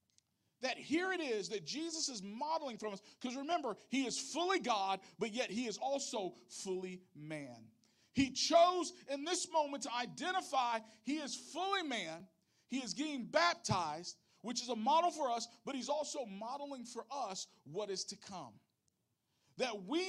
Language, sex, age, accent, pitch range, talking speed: English, male, 50-69, American, 215-305 Hz, 165 wpm